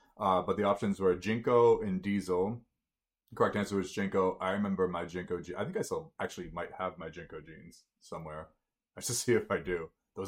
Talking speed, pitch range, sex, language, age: 210 wpm, 95-120 Hz, male, English, 20-39